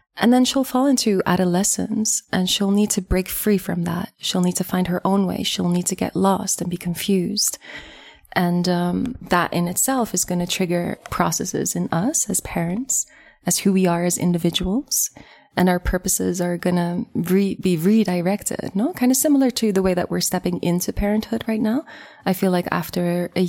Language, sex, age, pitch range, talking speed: English, female, 20-39, 180-220 Hz, 195 wpm